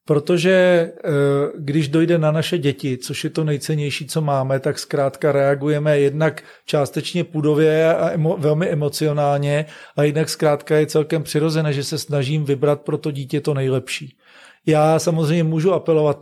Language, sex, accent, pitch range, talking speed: Czech, male, native, 145-165 Hz, 150 wpm